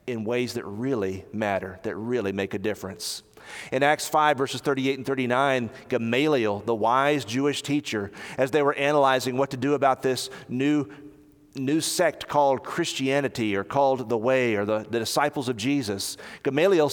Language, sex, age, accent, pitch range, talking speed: English, male, 40-59, American, 120-160 Hz, 165 wpm